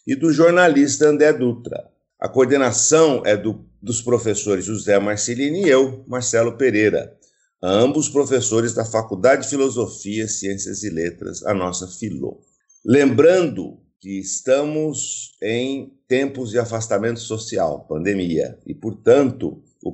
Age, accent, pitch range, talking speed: 50-69, Brazilian, 100-130 Hz, 120 wpm